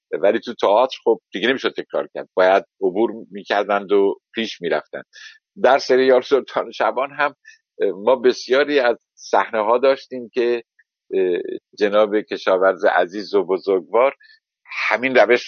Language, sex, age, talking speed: Persian, male, 50-69, 130 wpm